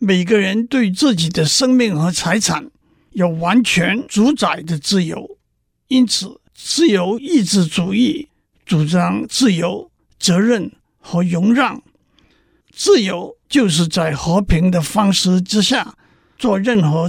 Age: 50-69